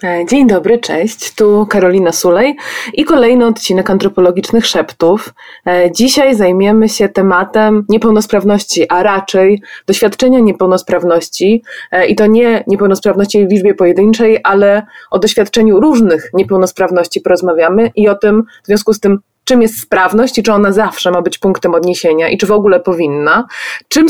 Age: 20-39